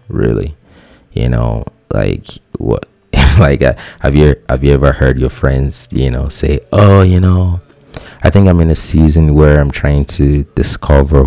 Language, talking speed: English, 170 wpm